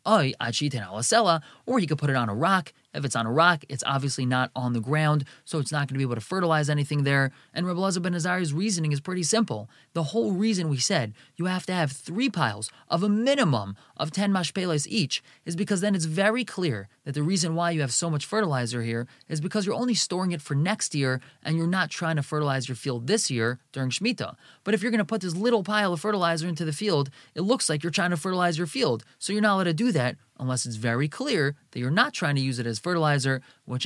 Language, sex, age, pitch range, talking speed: English, male, 20-39, 135-190 Hz, 245 wpm